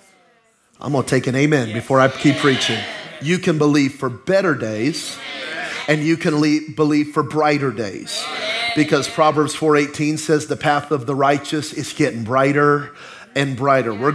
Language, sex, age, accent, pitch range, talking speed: English, male, 30-49, American, 135-165 Hz, 160 wpm